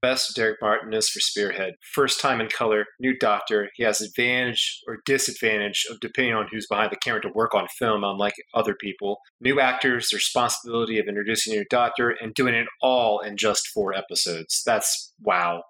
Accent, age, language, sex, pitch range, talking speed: American, 30-49, English, male, 110-130 Hz, 185 wpm